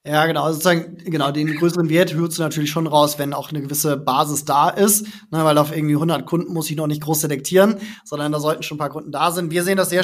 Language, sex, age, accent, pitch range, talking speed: German, male, 20-39, German, 150-170 Hz, 265 wpm